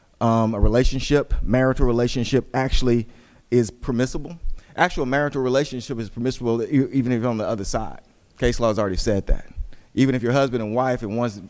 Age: 30-49